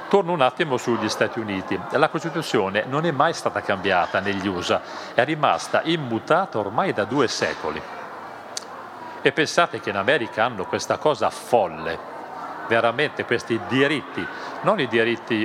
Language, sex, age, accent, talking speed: Italian, male, 40-59, native, 145 wpm